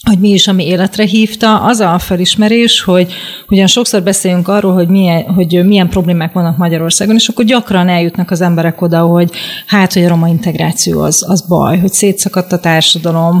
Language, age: Hungarian, 30-49